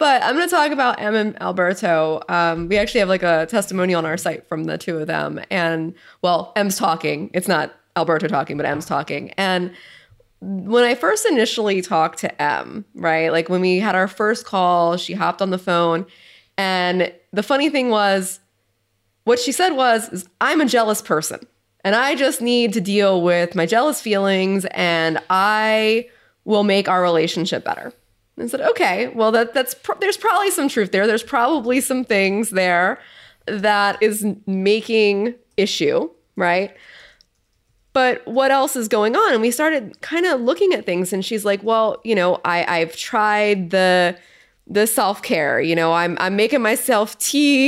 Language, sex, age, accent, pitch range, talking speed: English, female, 20-39, American, 180-230 Hz, 180 wpm